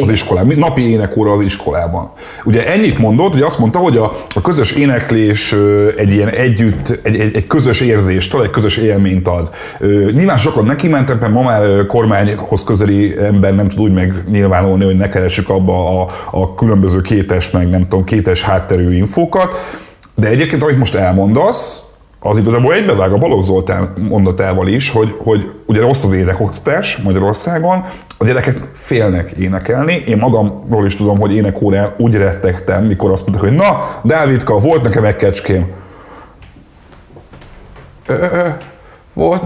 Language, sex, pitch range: Hungarian, male, 95-125 Hz